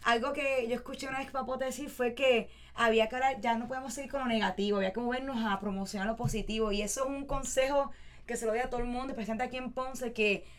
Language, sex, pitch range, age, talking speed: English, female, 215-260 Hz, 20-39, 255 wpm